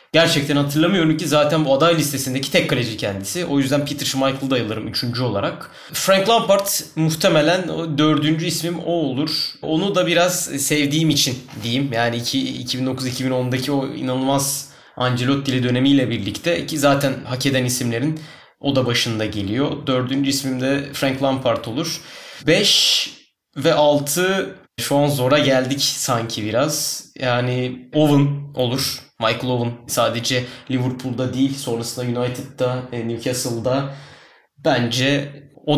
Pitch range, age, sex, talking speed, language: 125-145 Hz, 20-39, male, 125 wpm, Turkish